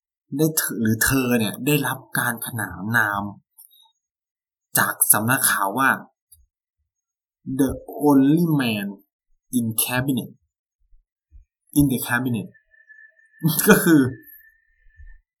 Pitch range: 100-165 Hz